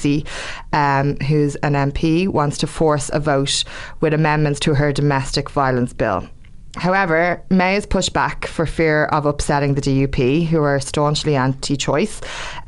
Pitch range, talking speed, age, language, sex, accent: 140-160 Hz, 145 wpm, 20-39, English, female, Irish